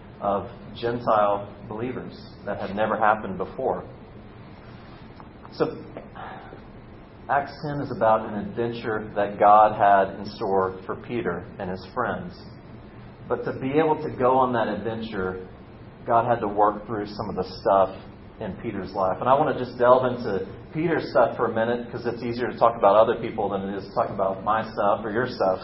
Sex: male